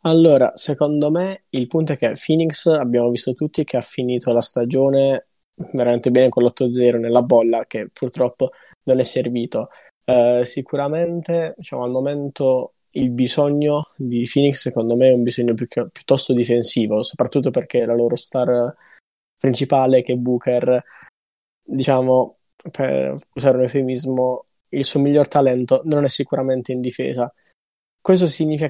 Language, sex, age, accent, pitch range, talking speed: Italian, male, 20-39, native, 125-145 Hz, 140 wpm